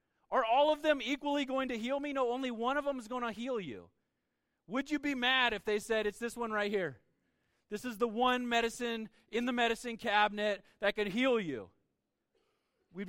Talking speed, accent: 205 wpm, American